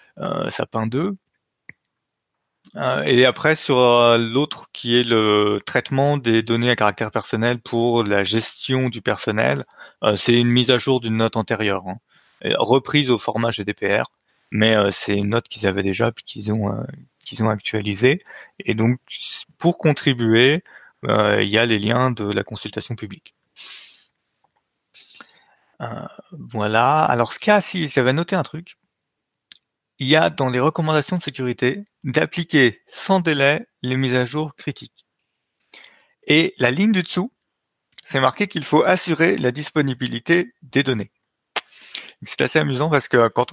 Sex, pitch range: male, 115-145 Hz